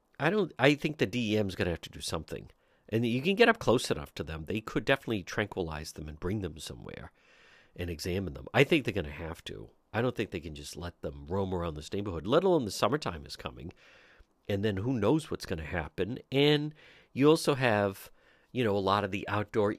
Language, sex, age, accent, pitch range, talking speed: English, male, 50-69, American, 90-130 Hz, 235 wpm